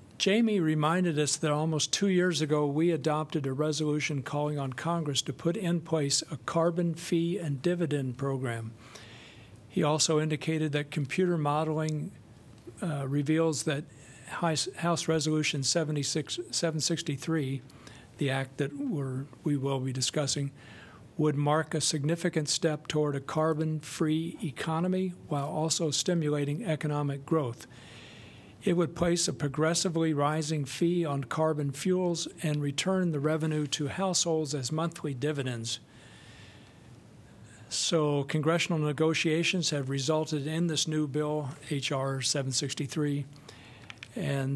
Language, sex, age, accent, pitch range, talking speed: English, male, 60-79, American, 135-160 Hz, 120 wpm